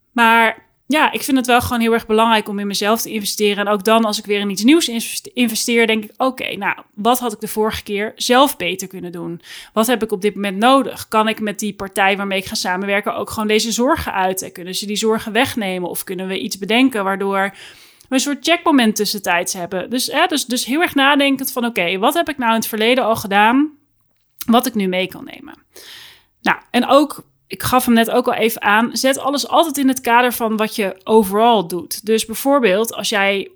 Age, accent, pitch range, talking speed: 30-49, Dutch, 200-245 Hz, 230 wpm